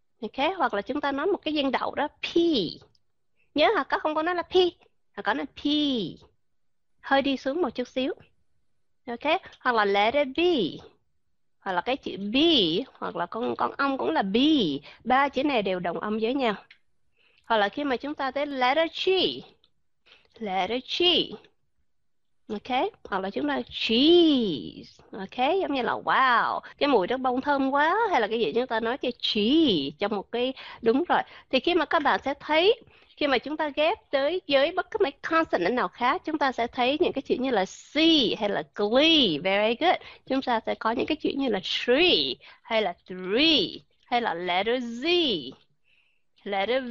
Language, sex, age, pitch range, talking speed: Vietnamese, female, 20-39, 230-320 Hz, 195 wpm